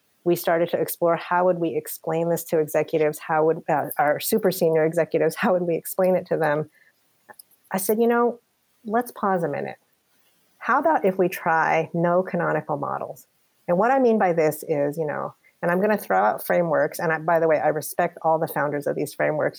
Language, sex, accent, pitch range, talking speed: English, female, American, 160-190 Hz, 210 wpm